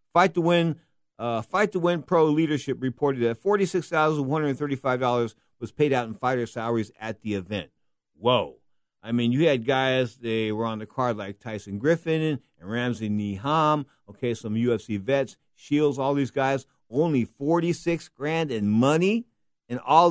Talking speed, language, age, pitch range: 180 wpm, English, 50-69, 120-170 Hz